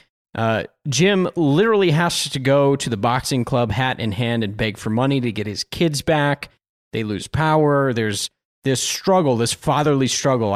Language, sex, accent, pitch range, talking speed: English, male, American, 120-150 Hz, 175 wpm